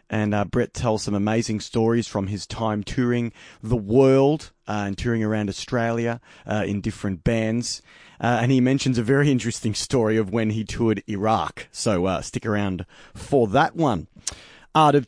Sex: male